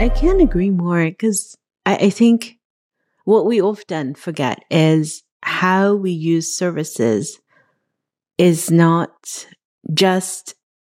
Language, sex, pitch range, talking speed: English, female, 160-205 Hz, 110 wpm